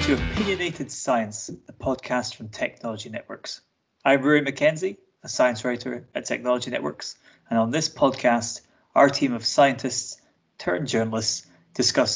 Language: English